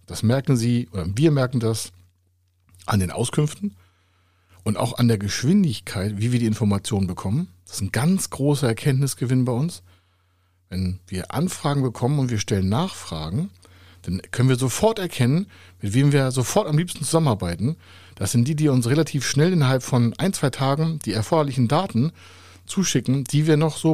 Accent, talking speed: German, 170 wpm